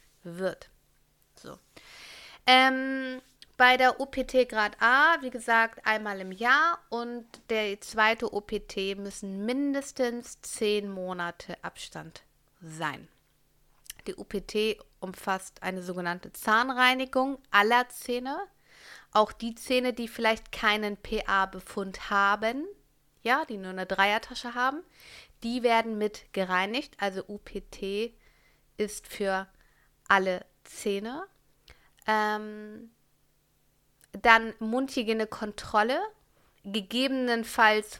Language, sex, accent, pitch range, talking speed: German, female, German, 200-255 Hz, 95 wpm